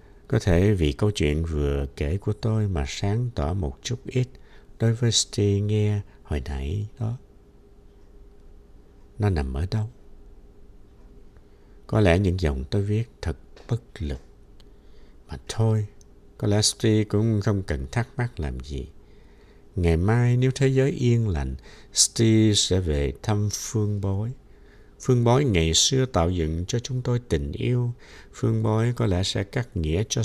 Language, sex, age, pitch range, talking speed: Vietnamese, male, 60-79, 80-115 Hz, 155 wpm